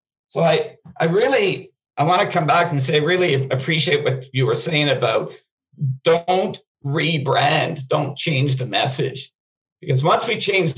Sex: male